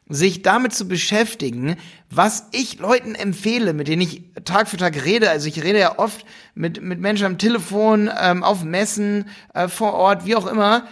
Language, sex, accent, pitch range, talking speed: German, male, German, 150-205 Hz, 185 wpm